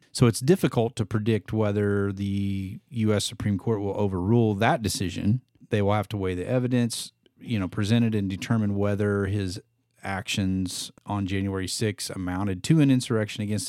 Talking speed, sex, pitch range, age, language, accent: 160 wpm, male, 95-120 Hz, 30-49, English, American